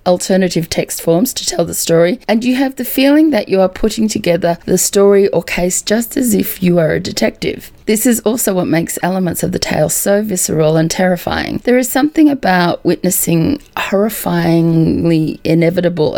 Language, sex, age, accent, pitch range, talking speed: English, female, 30-49, Australian, 170-220 Hz, 180 wpm